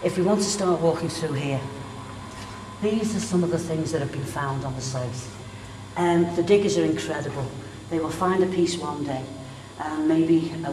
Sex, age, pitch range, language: female, 60-79, 130-170 Hz, English